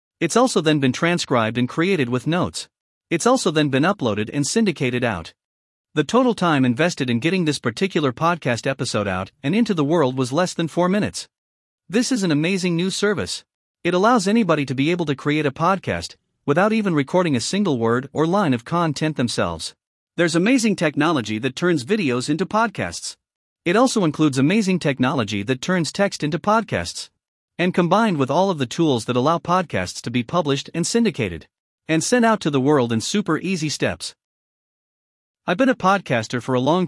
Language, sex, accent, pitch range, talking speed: English, male, American, 130-180 Hz, 185 wpm